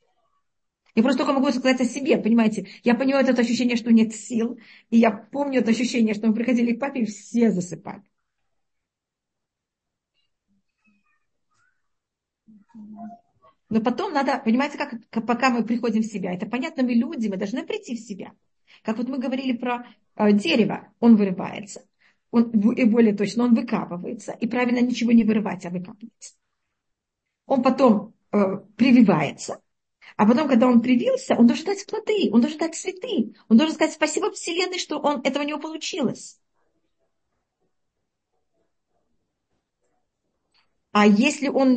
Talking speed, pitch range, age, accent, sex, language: 145 wpm, 220-265 Hz, 40-59, native, female, Russian